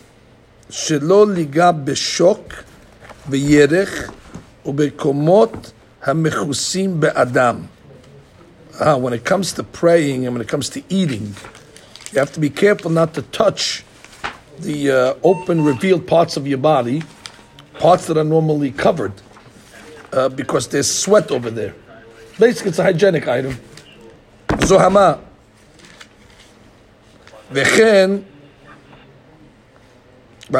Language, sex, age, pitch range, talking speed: English, male, 60-79, 125-185 Hz, 90 wpm